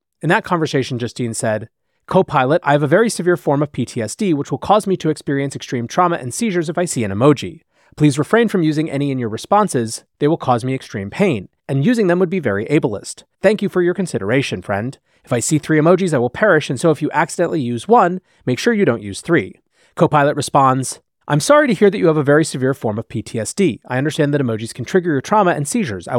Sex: male